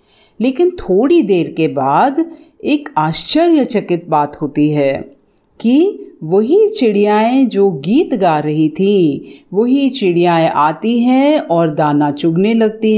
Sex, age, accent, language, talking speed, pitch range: female, 50-69, native, Hindi, 120 wpm, 155-220 Hz